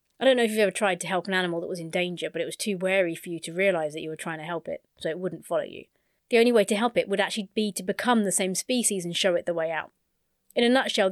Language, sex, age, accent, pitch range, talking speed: English, female, 30-49, British, 175-215 Hz, 320 wpm